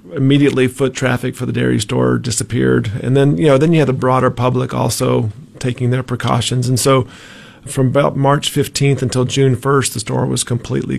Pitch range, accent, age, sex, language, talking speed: 115-125 Hz, American, 40-59, male, English, 190 wpm